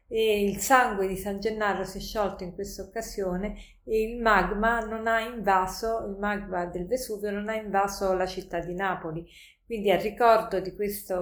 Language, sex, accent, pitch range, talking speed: Italian, female, native, 185-220 Hz, 175 wpm